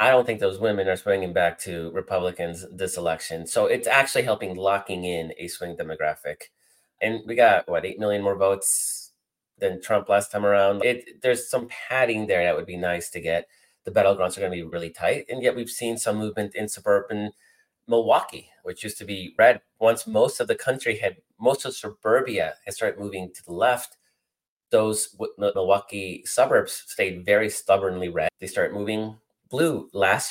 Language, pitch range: English, 90-125 Hz